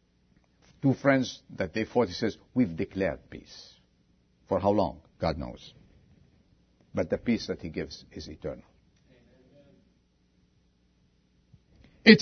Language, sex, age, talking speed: English, male, 50-69, 115 wpm